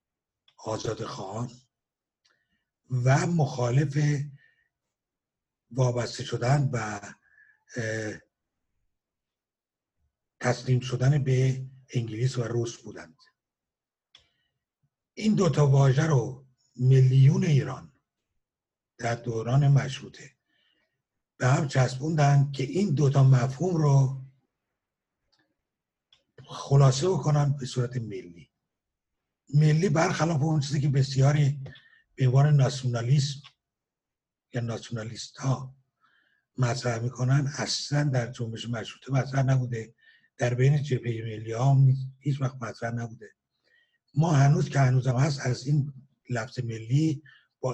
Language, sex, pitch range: Persian, male, 125-145 Hz